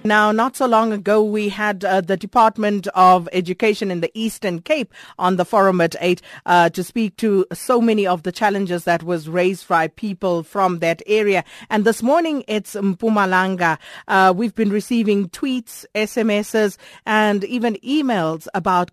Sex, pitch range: female, 175-210 Hz